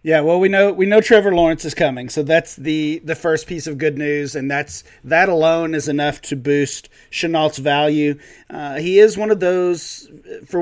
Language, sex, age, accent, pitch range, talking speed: English, male, 30-49, American, 140-170 Hz, 205 wpm